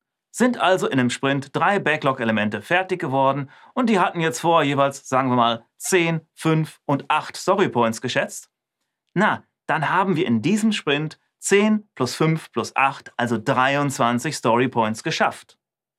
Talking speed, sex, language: 150 wpm, male, German